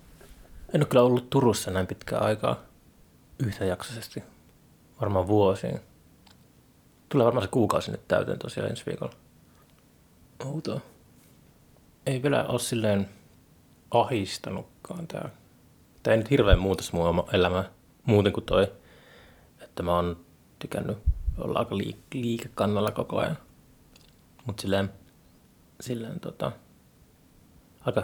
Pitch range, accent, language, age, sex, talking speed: 90-120 Hz, native, Finnish, 30-49, male, 110 wpm